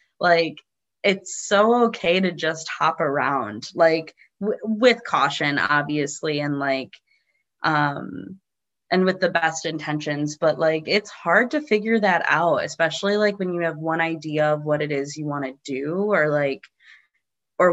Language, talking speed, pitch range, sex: English, 155 wpm, 150-175 Hz, female